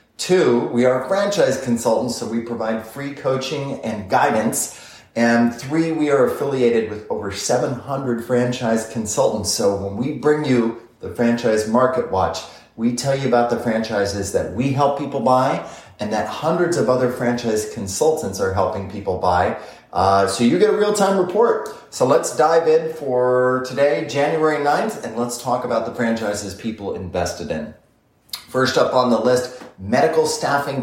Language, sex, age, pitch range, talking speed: English, male, 30-49, 110-140 Hz, 165 wpm